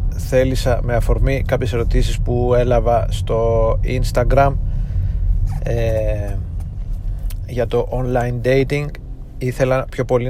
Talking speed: 95 wpm